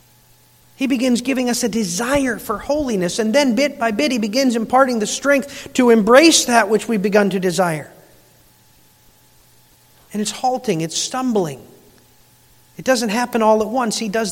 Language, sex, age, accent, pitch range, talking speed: English, male, 40-59, American, 190-240 Hz, 165 wpm